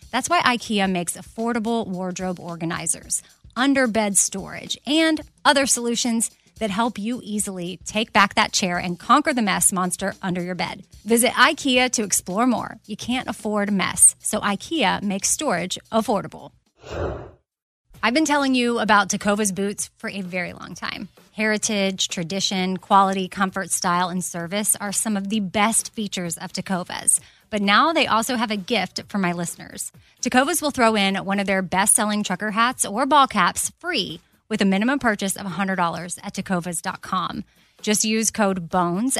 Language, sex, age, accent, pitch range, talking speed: English, female, 30-49, American, 190-230 Hz, 165 wpm